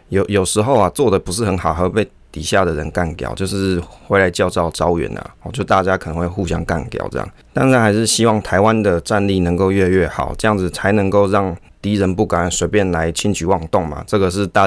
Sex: male